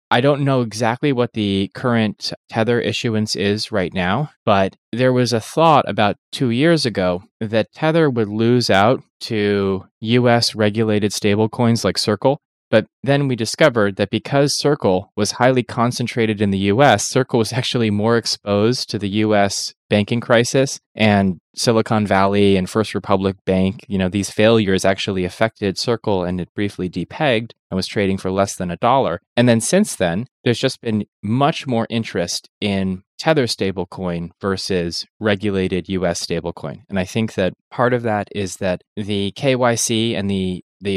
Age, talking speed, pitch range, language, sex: 20-39, 165 wpm, 95-120 Hz, English, male